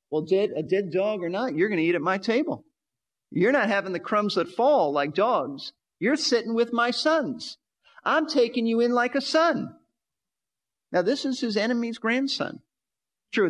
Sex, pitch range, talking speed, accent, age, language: male, 185-250 Hz, 185 wpm, American, 40-59, English